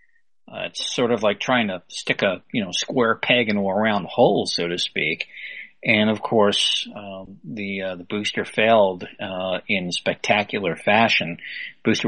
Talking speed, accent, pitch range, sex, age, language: 170 wpm, American, 100-130 Hz, male, 40-59, English